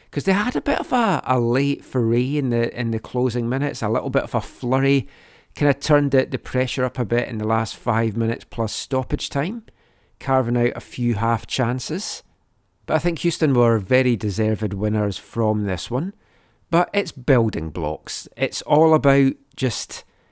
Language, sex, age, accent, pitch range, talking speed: English, male, 40-59, British, 115-140 Hz, 190 wpm